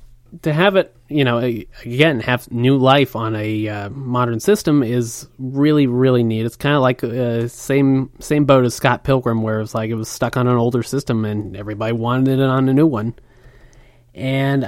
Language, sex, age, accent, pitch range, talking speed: English, male, 30-49, American, 120-150 Hz, 200 wpm